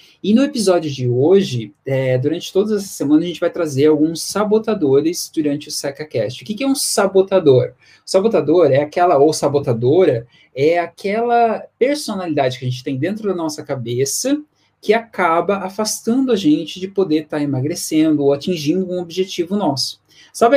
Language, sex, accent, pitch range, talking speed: Portuguese, male, Brazilian, 150-205 Hz, 170 wpm